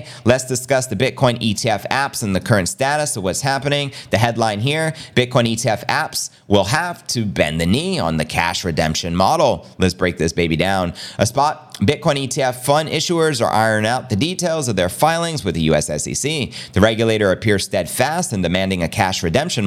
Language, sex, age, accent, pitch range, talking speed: English, male, 30-49, American, 95-135 Hz, 190 wpm